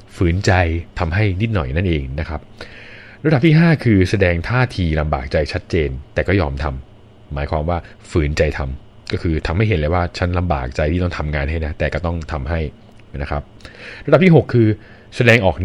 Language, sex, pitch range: Thai, male, 80-110 Hz